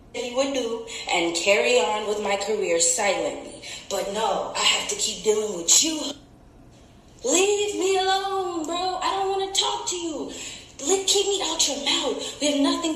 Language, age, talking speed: English, 20-39, 180 wpm